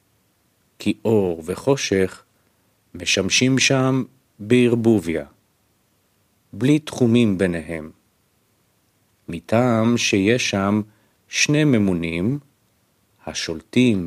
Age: 50-69